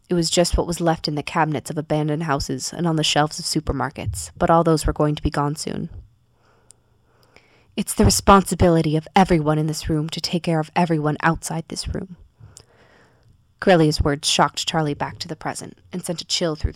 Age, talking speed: 20-39, 200 wpm